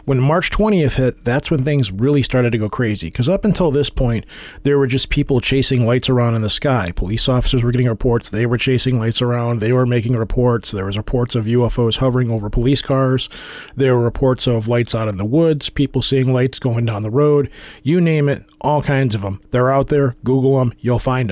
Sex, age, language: male, 40-59, English